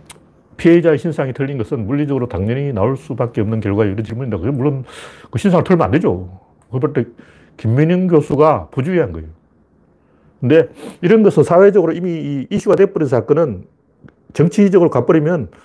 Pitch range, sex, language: 115-185 Hz, male, Korean